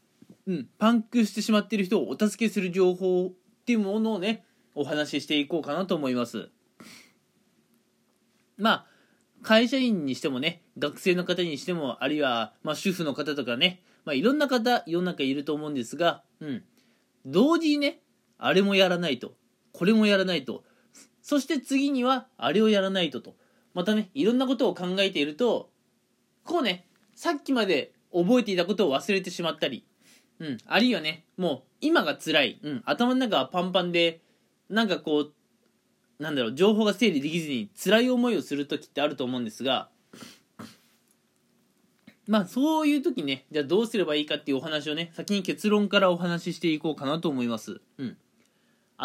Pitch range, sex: 155-235 Hz, male